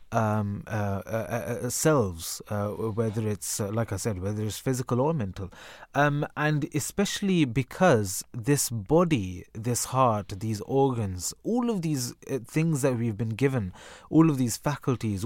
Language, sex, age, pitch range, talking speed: English, male, 30-49, 115-155 Hz, 155 wpm